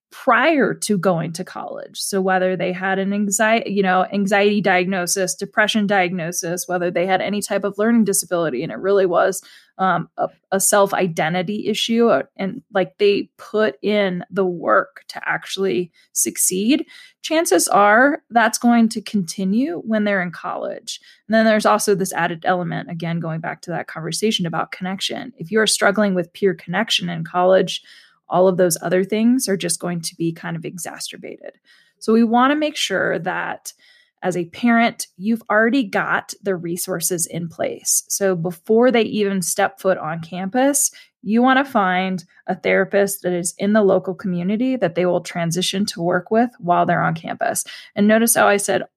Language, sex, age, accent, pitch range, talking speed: English, female, 20-39, American, 180-220 Hz, 175 wpm